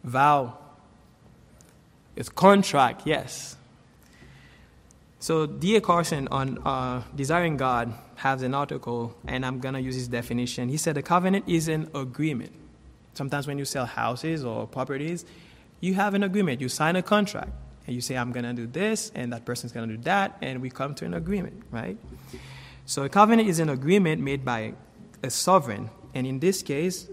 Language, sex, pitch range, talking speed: English, male, 125-175 Hz, 175 wpm